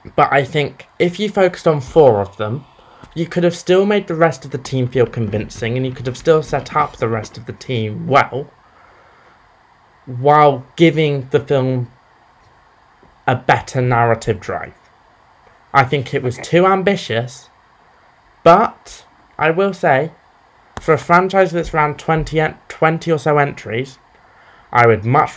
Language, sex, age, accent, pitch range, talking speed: English, male, 20-39, British, 115-160 Hz, 155 wpm